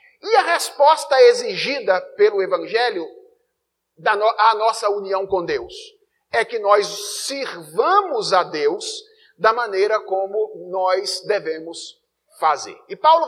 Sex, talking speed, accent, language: male, 120 wpm, Brazilian, Portuguese